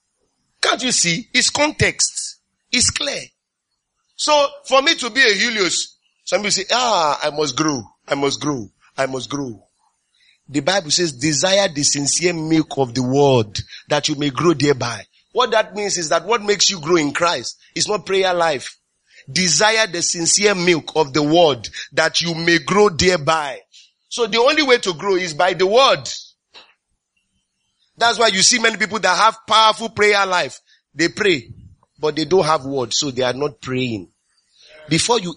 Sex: male